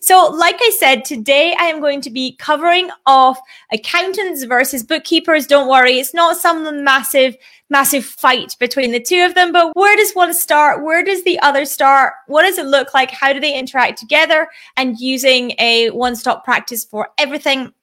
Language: English